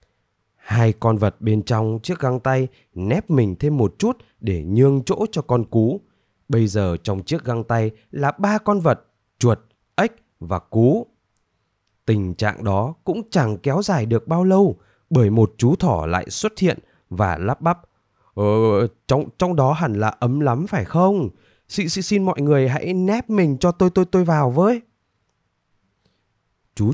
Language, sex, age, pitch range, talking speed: Vietnamese, male, 20-39, 105-160 Hz, 170 wpm